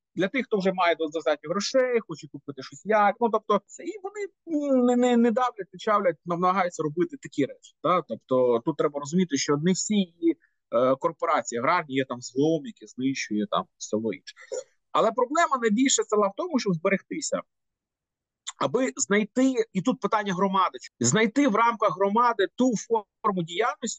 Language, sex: Ukrainian, male